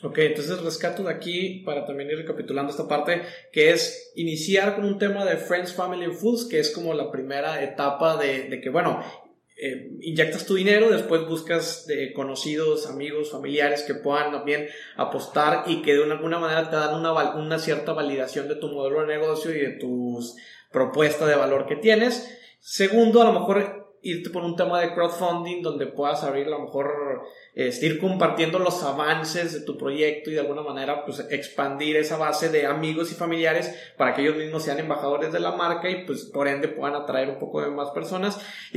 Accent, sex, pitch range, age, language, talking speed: Mexican, male, 145-180 Hz, 20-39, Spanish, 200 wpm